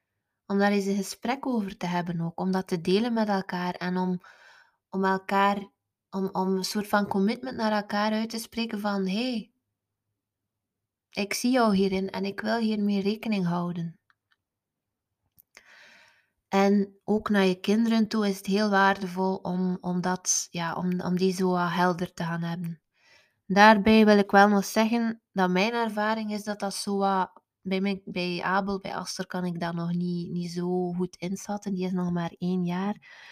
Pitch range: 180-205 Hz